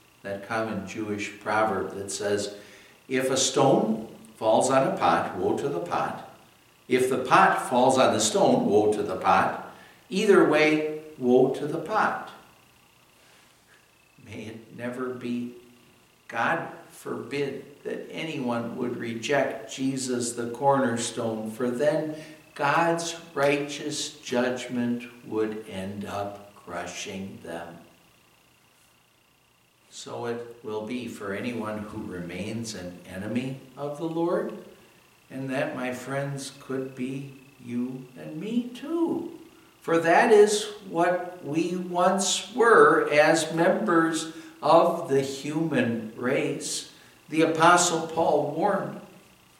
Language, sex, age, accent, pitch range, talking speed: English, male, 60-79, American, 120-165 Hz, 115 wpm